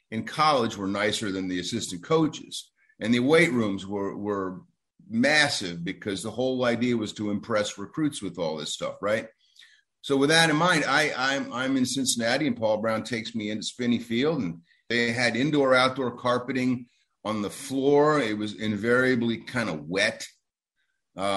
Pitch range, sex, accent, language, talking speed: 110-135 Hz, male, American, English, 175 wpm